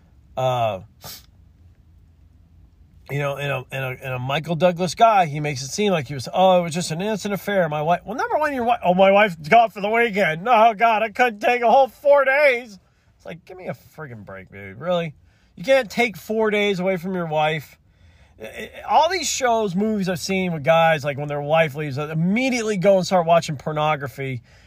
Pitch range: 120-195 Hz